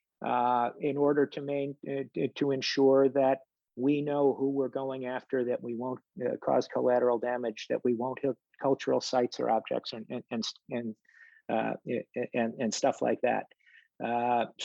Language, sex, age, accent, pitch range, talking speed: English, male, 50-69, American, 125-140 Hz, 160 wpm